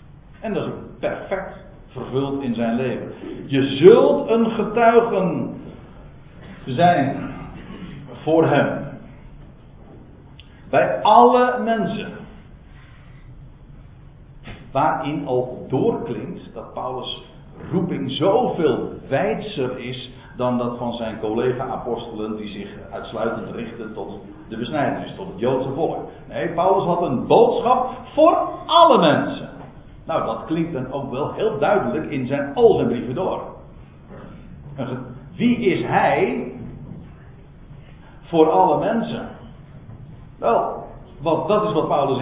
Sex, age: male, 60-79